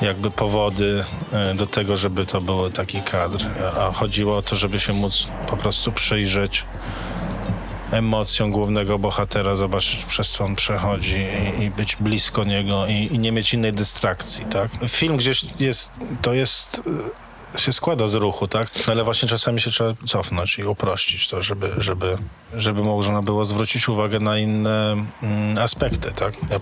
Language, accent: Polish, native